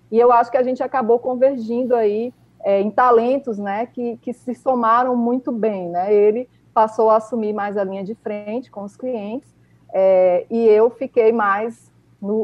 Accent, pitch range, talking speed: Brazilian, 200-255 Hz, 175 wpm